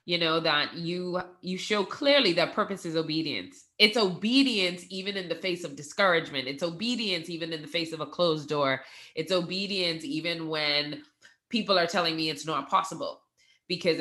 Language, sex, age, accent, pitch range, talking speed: English, female, 20-39, American, 150-180 Hz, 175 wpm